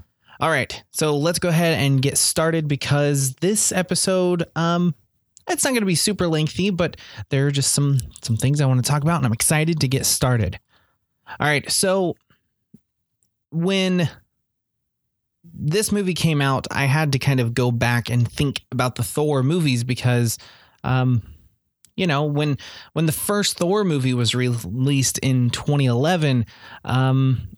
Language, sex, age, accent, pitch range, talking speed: English, male, 20-39, American, 120-160 Hz, 160 wpm